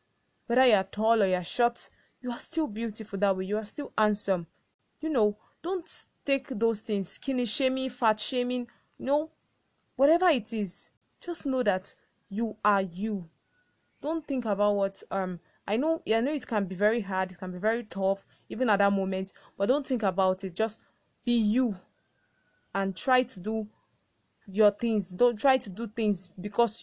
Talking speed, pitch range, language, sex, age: 180 wpm, 195-235 Hz, English, female, 20-39